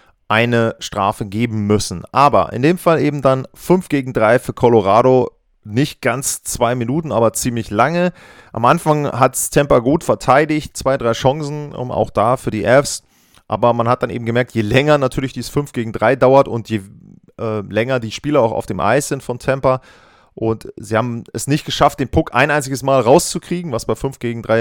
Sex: male